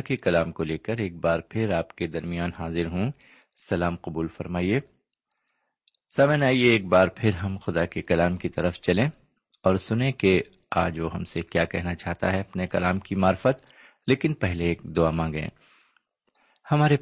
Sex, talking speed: male, 175 wpm